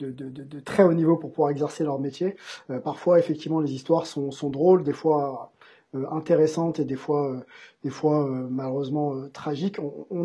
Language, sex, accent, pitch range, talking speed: French, male, French, 155-195 Hz, 205 wpm